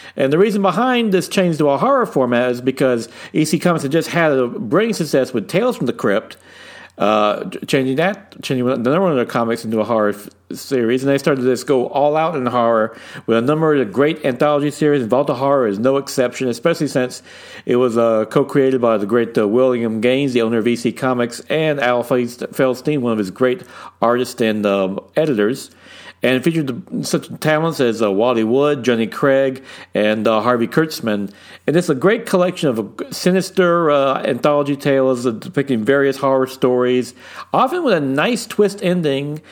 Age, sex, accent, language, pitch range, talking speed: 50-69, male, American, English, 120-170 Hz, 190 wpm